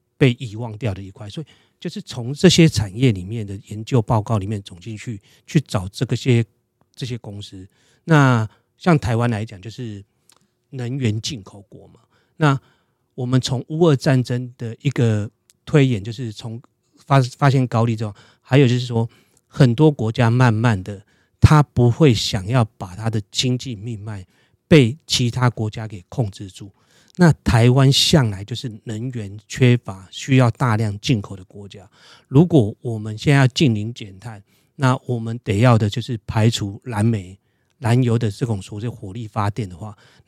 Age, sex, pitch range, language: 30-49, male, 110-130 Hz, Chinese